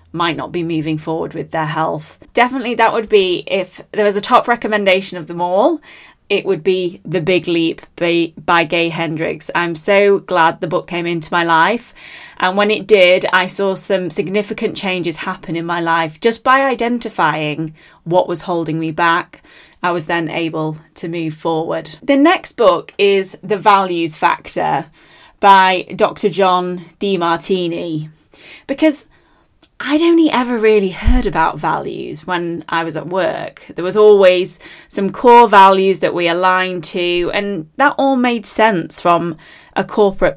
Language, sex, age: English, female, 20-39